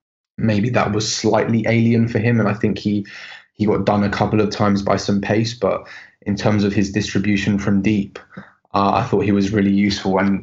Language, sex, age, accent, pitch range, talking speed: English, male, 20-39, British, 100-105 Hz, 215 wpm